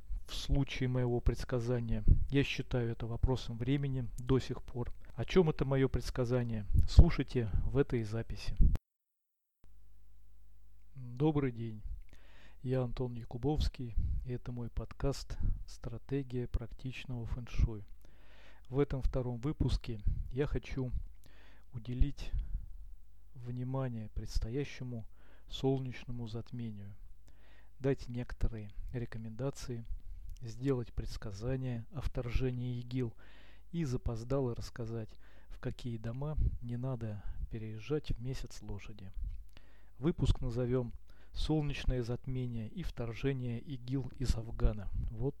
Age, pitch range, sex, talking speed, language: 40-59, 100-130 Hz, male, 100 wpm, Russian